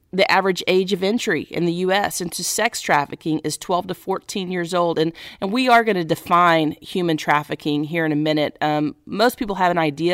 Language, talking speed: English, 215 wpm